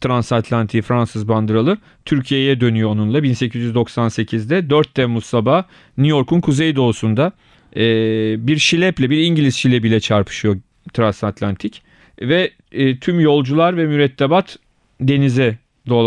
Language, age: Turkish, 40-59